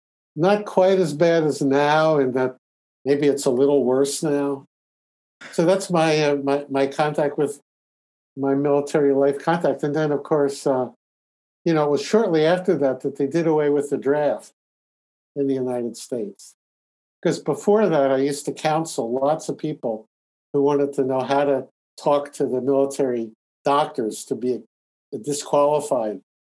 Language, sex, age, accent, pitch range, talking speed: English, male, 60-79, American, 125-150 Hz, 165 wpm